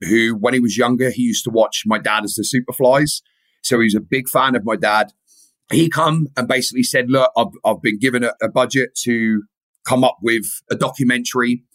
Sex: male